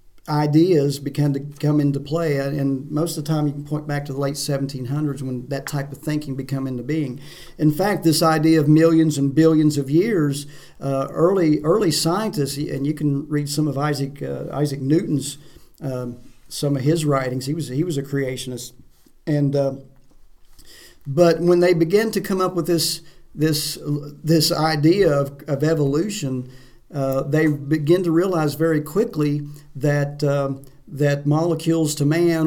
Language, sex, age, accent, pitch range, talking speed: English, male, 50-69, American, 140-160 Hz, 170 wpm